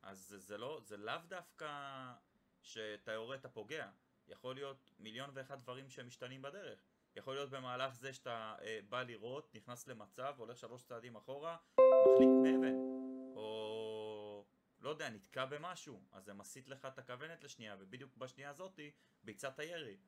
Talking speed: 145 wpm